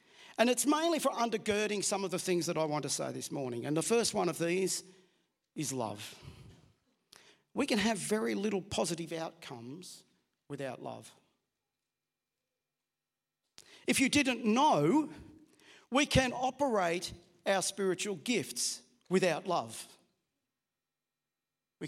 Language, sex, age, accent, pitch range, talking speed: English, male, 50-69, Australian, 170-250 Hz, 125 wpm